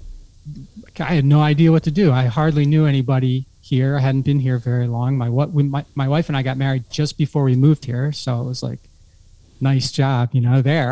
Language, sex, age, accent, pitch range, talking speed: English, male, 30-49, American, 130-160 Hz, 225 wpm